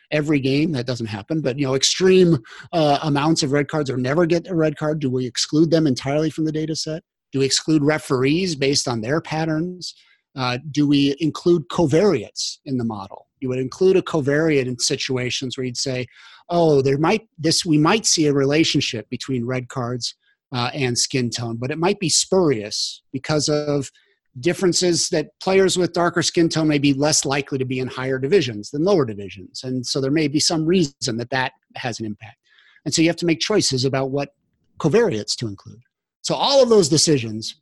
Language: English